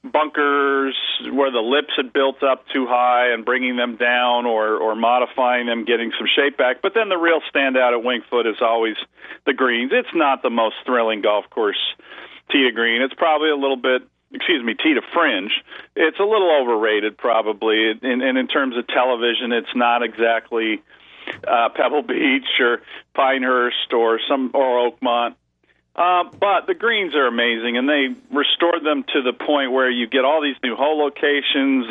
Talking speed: 180 wpm